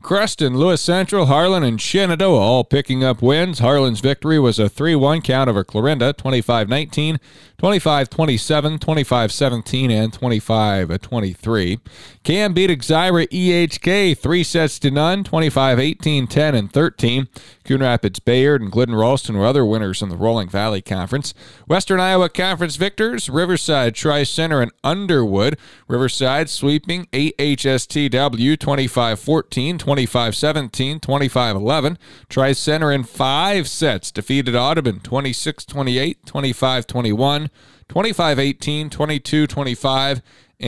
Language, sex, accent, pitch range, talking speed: English, male, American, 120-155 Hz, 110 wpm